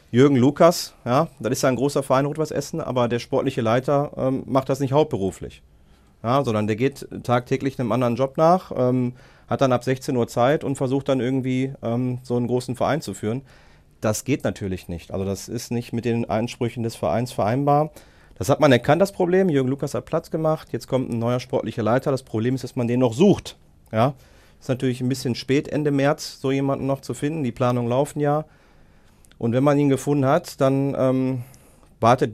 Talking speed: 210 wpm